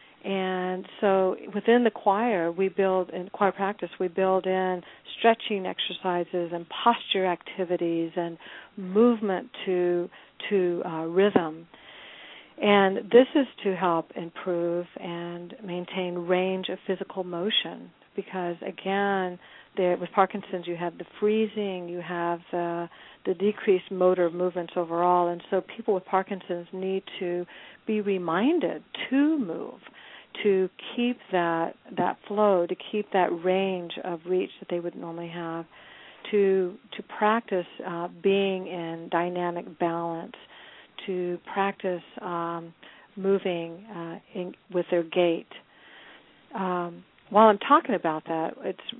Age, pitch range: 50-69, 175-200 Hz